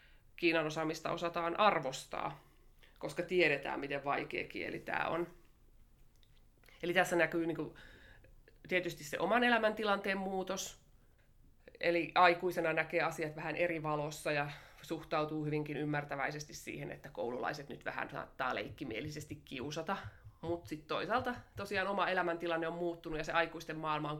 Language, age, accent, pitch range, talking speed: Finnish, 20-39, native, 150-180 Hz, 125 wpm